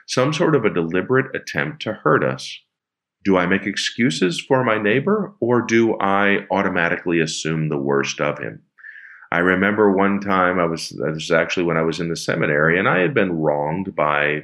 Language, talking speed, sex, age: English, 190 wpm, male, 40-59